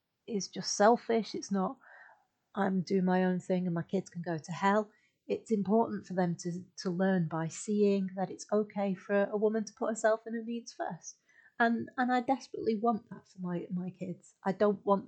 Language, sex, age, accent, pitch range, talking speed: English, female, 30-49, British, 175-205 Hz, 205 wpm